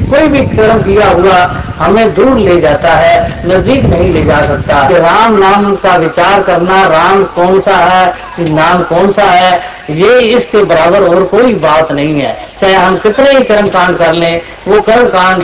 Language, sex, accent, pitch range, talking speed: Hindi, female, native, 170-205 Hz, 185 wpm